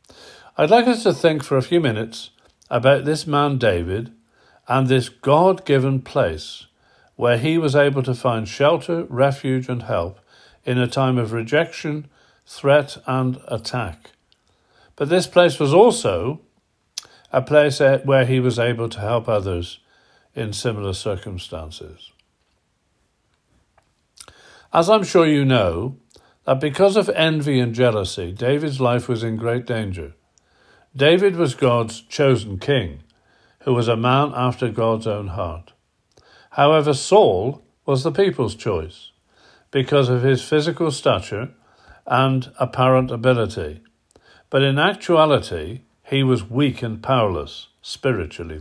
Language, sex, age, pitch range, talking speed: English, male, 50-69, 115-145 Hz, 130 wpm